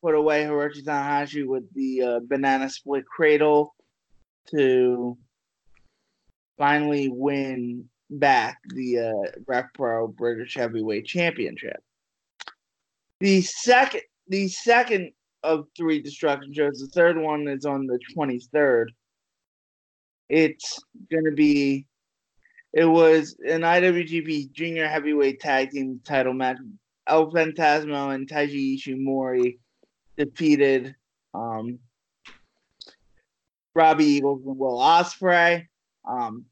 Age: 20-39